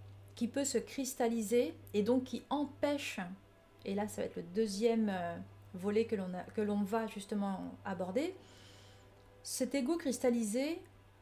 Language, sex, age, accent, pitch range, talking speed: French, female, 30-49, French, 170-245 Hz, 135 wpm